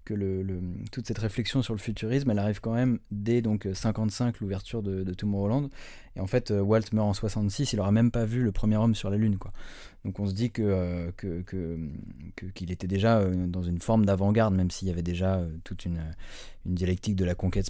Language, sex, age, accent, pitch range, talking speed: French, male, 20-39, French, 95-110 Hz, 220 wpm